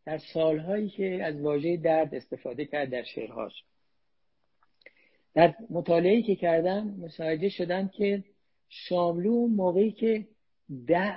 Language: Persian